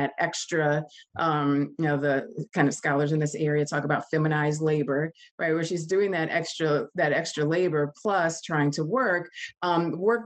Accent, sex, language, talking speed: American, female, English, 180 wpm